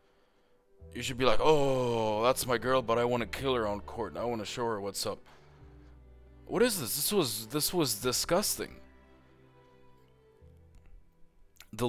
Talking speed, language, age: 155 wpm, English, 20-39